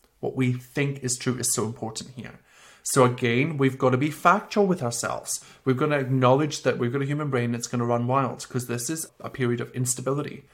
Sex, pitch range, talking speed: male, 125-155 Hz, 230 wpm